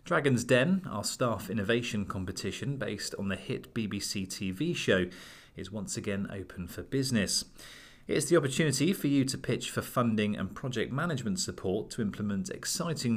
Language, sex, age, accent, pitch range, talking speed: English, male, 30-49, British, 95-130 Hz, 160 wpm